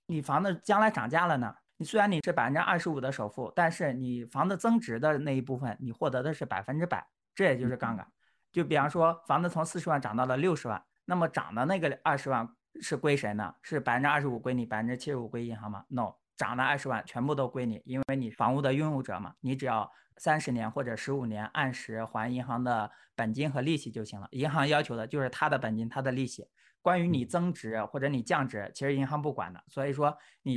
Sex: male